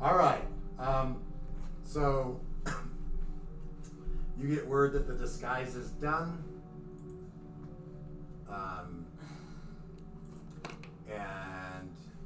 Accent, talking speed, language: American, 70 wpm, English